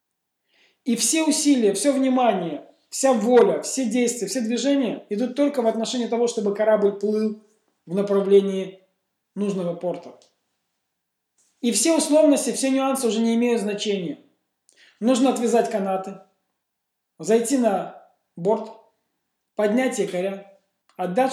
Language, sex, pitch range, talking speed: Russian, male, 195-235 Hz, 115 wpm